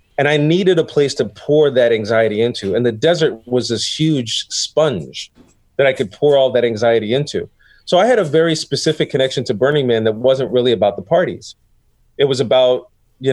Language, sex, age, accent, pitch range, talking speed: English, male, 30-49, American, 120-160 Hz, 205 wpm